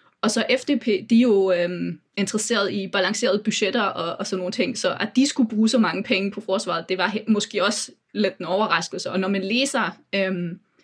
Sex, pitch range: female, 190-225 Hz